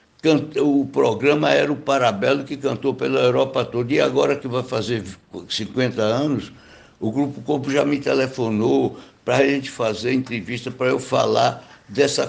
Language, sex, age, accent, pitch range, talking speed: Portuguese, male, 60-79, Brazilian, 115-140 Hz, 155 wpm